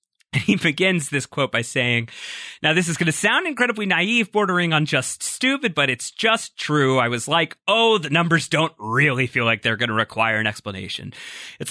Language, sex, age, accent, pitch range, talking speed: English, male, 30-49, American, 115-160 Hz, 200 wpm